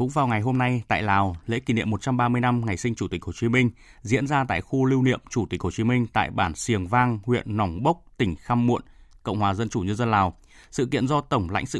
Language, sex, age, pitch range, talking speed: Vietnamese, male, 20-39, 100-140 Hz, 270 wpm